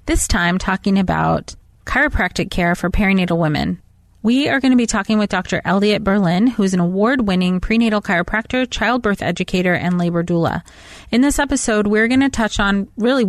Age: 30-49